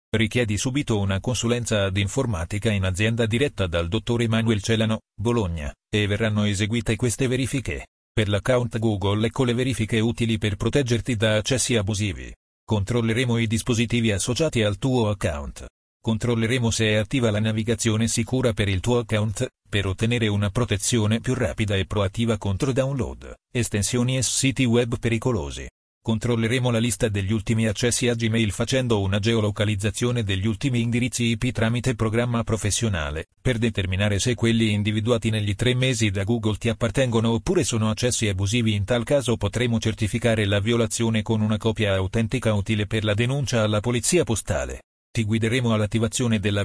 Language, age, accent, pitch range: Italian, 40-59, native, 105-120 Hz